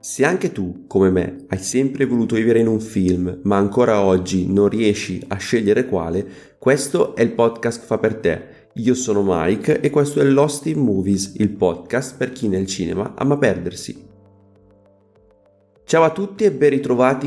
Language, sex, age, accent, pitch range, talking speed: Italian, male, 30-49, native, 100-120 Hz, 175 wpm